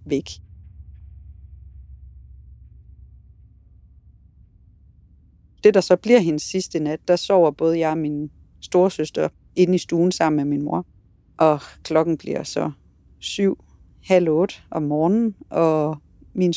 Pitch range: 150-180 Hz